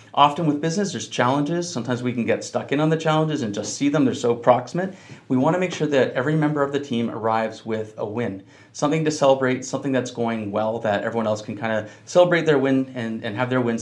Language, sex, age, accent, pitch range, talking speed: English, male, 40-59, American, 115-145 Hz, 250 wpm